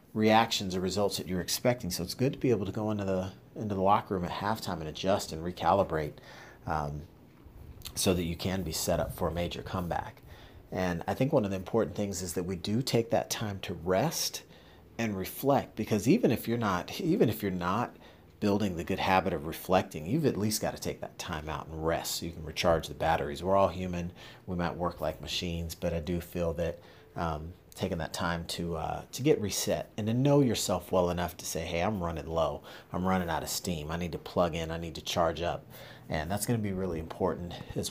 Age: 40-59